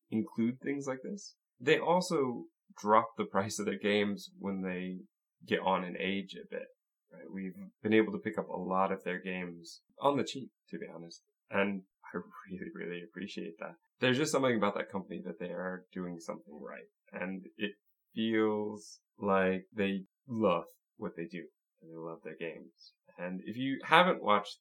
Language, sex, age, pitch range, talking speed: English, male, 20-39, 90-130 Hz, 185 wpm